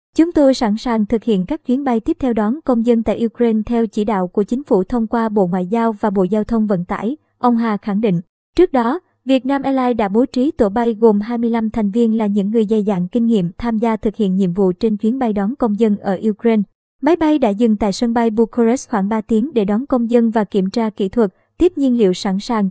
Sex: male